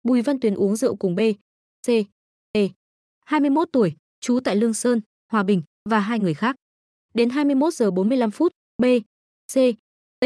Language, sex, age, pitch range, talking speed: Vietnamese, female, 20-39, 200-255 Hz, 175 wpm